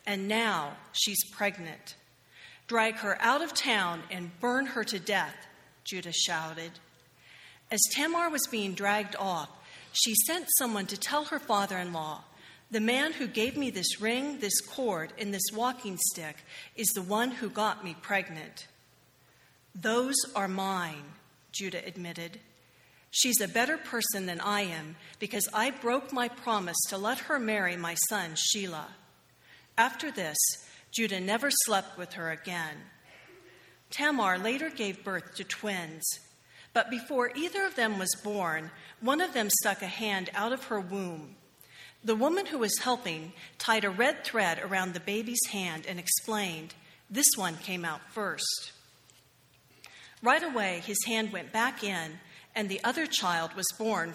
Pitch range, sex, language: 180-235 Hz, female, English